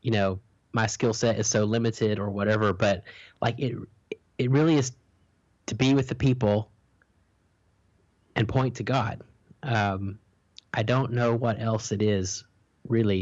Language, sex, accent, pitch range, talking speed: English, male, American, 100-115 Hz, 155 wpm